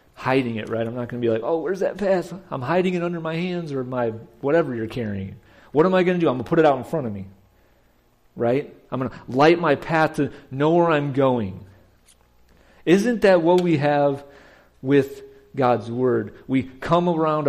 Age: 40-59